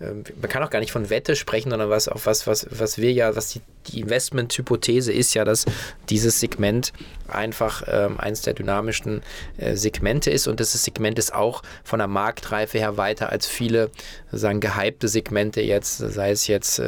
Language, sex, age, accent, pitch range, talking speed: German, male, 20-39, German, 105-120 Hz, 180 wpm